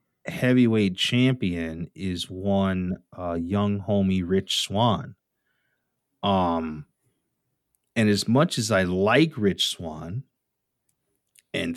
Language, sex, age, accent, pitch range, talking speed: English, male, 30-49, American, 95-130 Hz, 95 wpm